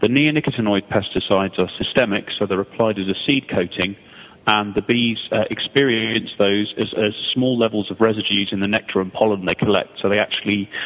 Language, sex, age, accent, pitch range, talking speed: English, male, 30-49, British, 100-120 Hz, 190 wpm